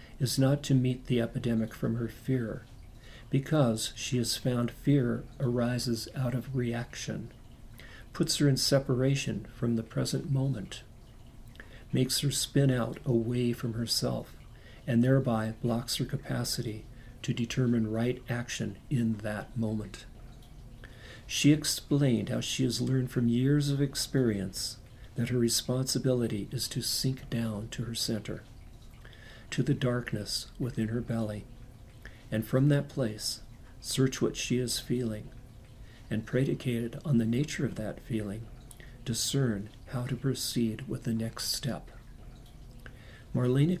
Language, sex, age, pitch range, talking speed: English, male, 50-69, 115-130 Hz, 135 wpm